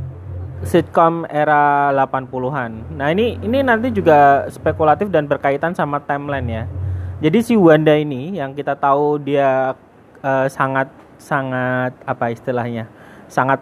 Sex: male